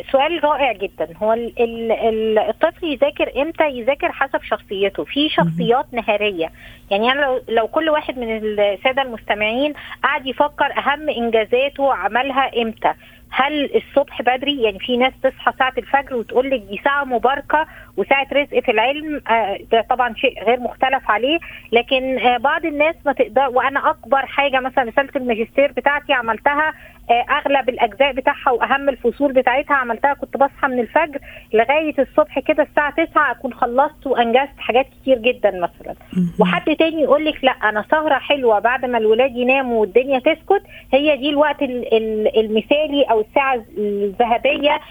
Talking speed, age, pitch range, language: 145 wpm, 20-39, 235-285 Hz, Arabic